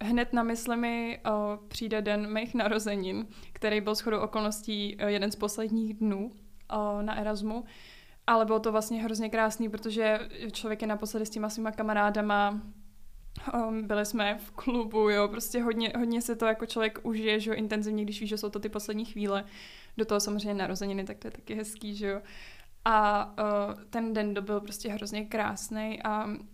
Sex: female